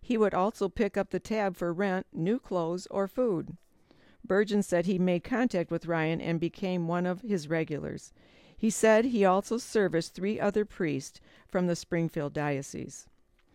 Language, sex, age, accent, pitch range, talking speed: English, female, 50-69, American, 165-200 Hz, 170 wpm